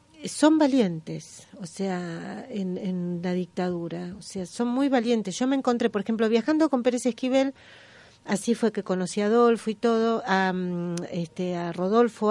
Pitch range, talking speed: 185-240 Hz, 165 wpm